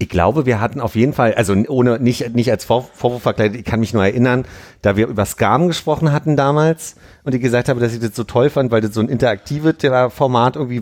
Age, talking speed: 40-59, 240 wpm